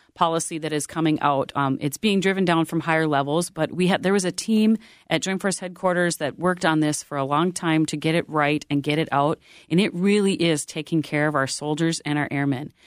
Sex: female